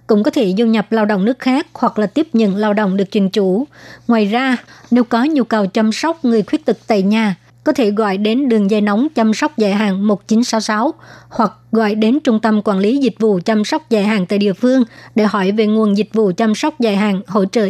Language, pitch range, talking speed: Vietnamese, 205-235 Hz, 240 wpm